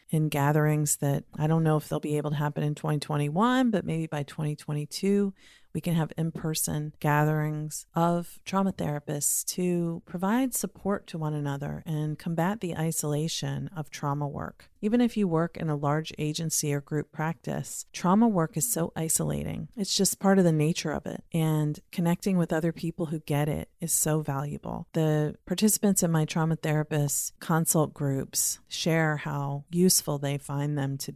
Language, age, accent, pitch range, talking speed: English, 30-49, American, 150-180 Hz, 170 wpm